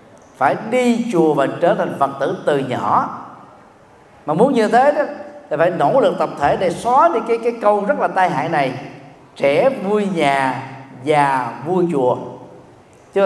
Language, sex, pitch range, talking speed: Vietnamese, male, 155-225 Hz, 175 wpm